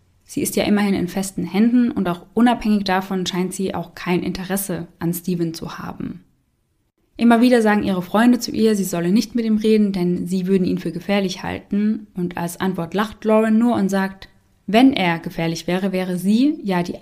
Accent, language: German, German